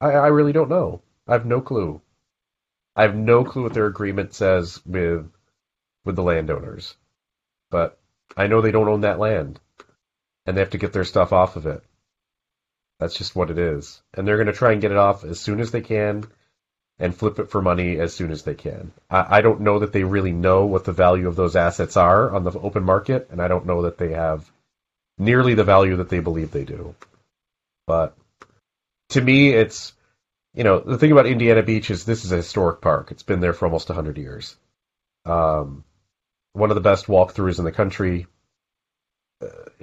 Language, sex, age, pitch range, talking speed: English, male, 30-49, 85-110 Hz, 205 wpm